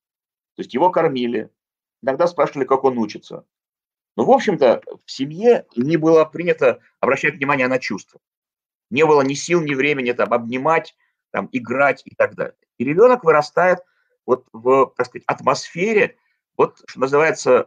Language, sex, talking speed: Russian, male, 150 wpm